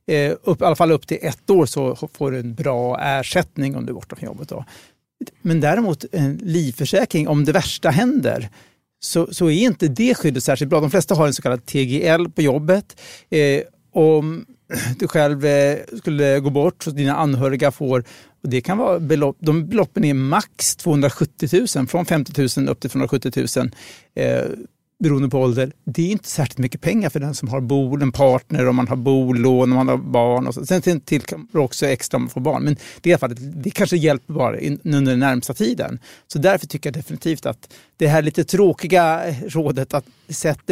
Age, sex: 60-79, male